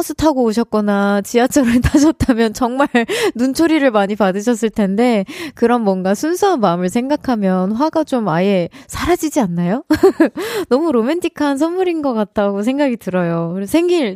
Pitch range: 195-275 Hz